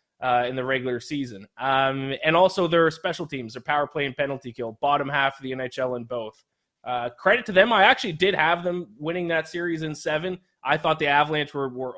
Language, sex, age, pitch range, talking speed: English, male, 20-39, 125-150 Hz, 225 wpm